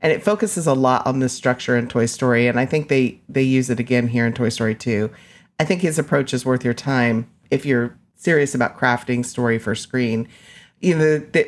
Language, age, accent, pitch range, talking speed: English, 40-59, American, 125-150 Hz, 230 wpm